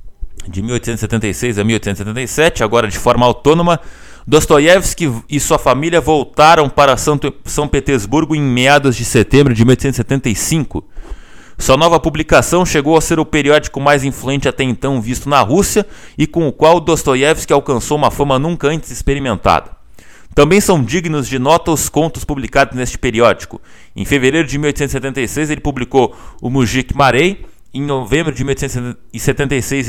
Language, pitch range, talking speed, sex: Portuguese, 125-155 Hz, 145 wpm, male